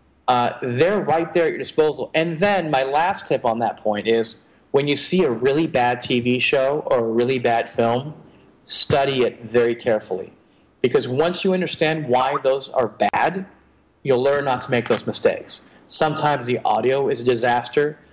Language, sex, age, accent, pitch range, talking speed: English, male, 30-49, American, 120-145 Hz, 180 wpm